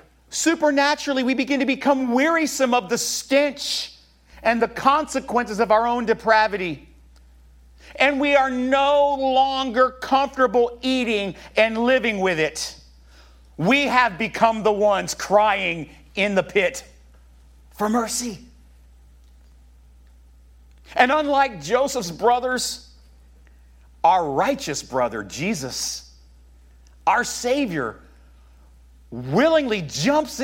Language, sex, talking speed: English, male, 100 wpm